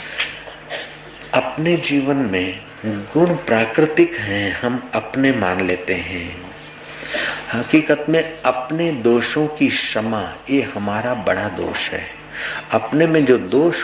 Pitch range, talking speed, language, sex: 105-150 Hz, 115 wpm, Hindi, male